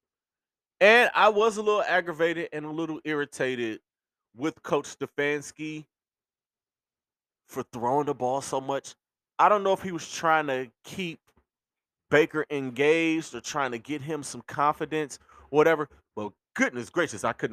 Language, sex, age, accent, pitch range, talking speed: English, male, 30-49, American, 140-230 Hz, 145 wpm